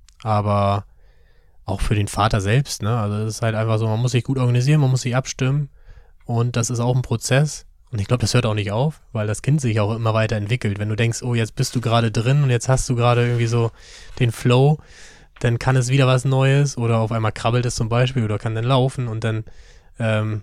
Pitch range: 105-130 Hz